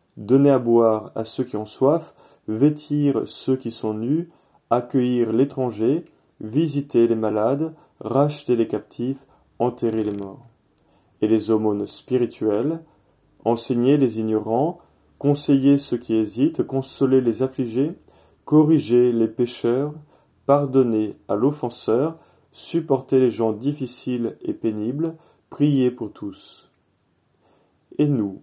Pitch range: 110-140 Hz